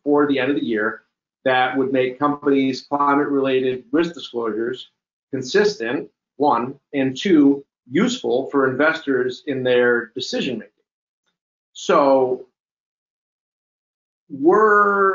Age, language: 40-59, English